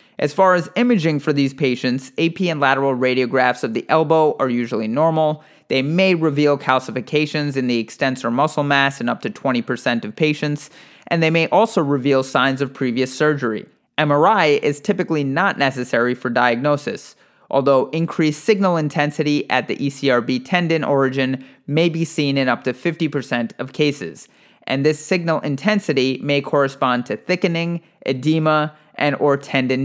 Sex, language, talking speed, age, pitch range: male, English, 155 wpm, 30-49, 130-160 Hz